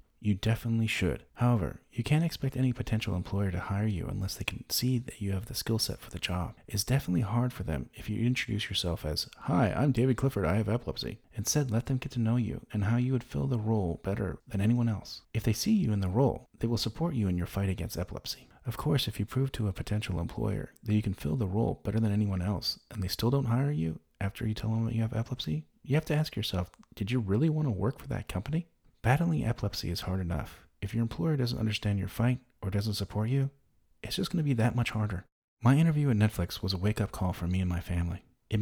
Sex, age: male, 30-49